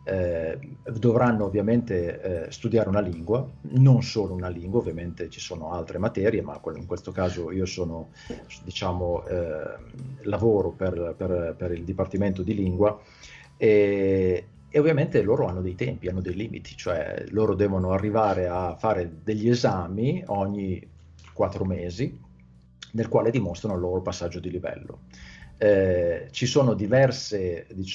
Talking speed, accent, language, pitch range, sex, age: 135 wpm, native, Italian, 90-110 Hz, male, 40-59